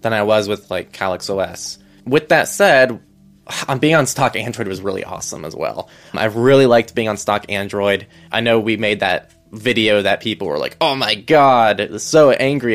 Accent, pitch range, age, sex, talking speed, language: American, 100-120 Hz, 20-39, male, 195 wpm, English